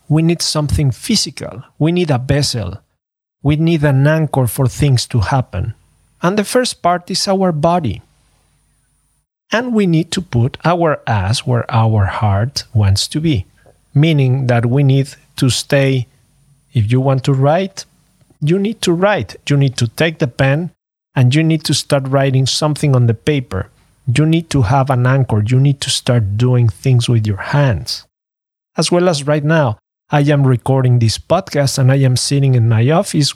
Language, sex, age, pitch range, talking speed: English, male, 40-59, 125-155 Hz, 180 wpm